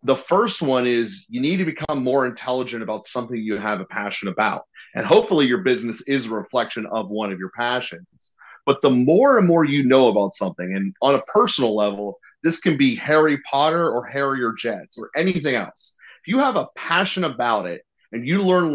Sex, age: male, 30-49